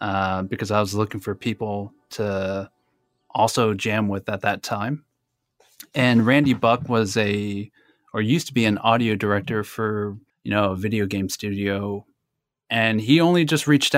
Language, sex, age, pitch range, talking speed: English, male, 20-39, 105-125 Hz, 165 wpm